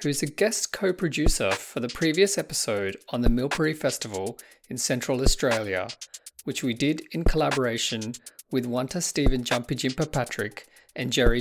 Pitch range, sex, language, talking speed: 120-155 Hz, male, English, 145 wpm